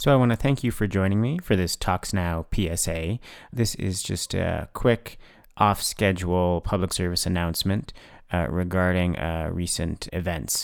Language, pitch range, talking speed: English, 85-100 Hz, 160 wpm